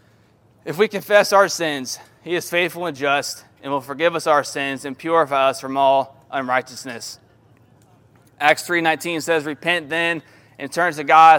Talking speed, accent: 165 wpm, American